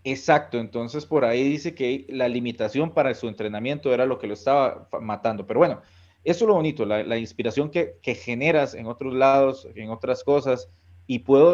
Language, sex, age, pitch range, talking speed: Spanish, male, 30-49, 110-135 Hz, 190 wpm